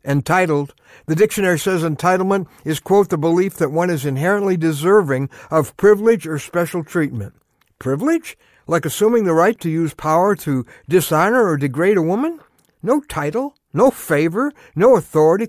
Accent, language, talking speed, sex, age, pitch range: American, English, 150 wpm, male, 60-79, 150-220 Hz